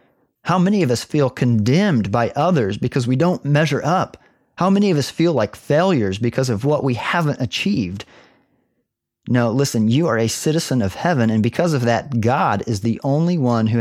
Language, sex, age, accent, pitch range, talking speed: English, male, 40-59, American, 110-145 Hz, 190 wpm